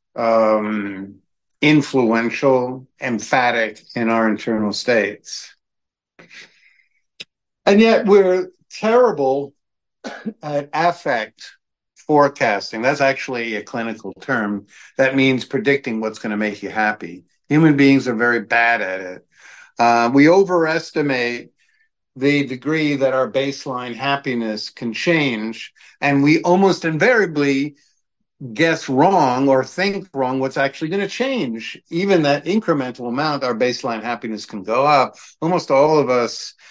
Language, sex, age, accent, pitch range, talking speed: English, male, 50-69, American, 120-160 Hz, 120 wpm